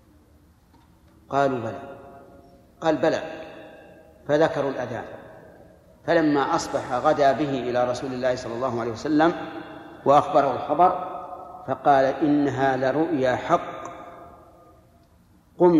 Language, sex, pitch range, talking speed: Arabic, male, 130-160 Hz, 90 wpm